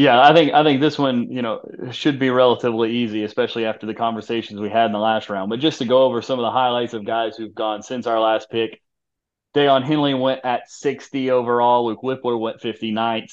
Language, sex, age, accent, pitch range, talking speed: English, male, 30-49, American, 110-130 Hz, 225 wpm